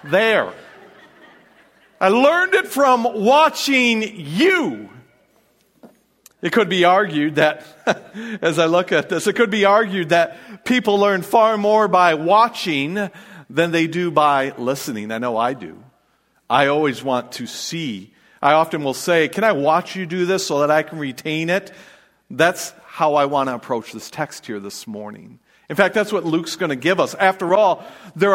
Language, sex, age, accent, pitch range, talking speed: English, male, 50-69, American, 150-235 Hz, 170 wpm